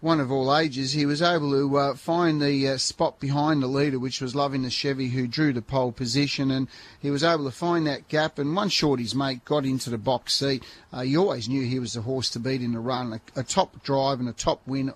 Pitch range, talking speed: 125-140 Hz, 255 wpm